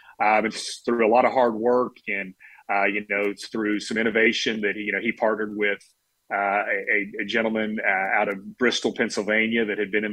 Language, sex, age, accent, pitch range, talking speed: English, male, 30-49, American, 105-120 Hz, 205 wpm